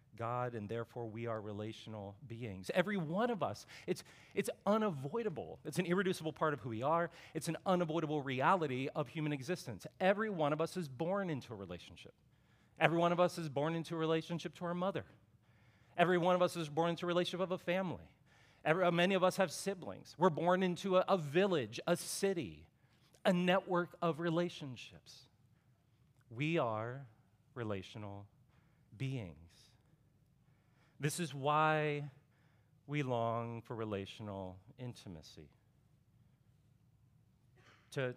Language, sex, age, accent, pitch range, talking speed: English, male, 40-59, American, 120-160 Hz, 145 wpm